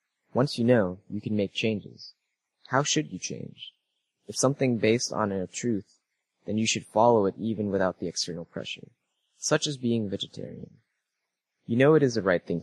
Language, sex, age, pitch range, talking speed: English, male, 20-39, 100-125 Hz, 180 wpm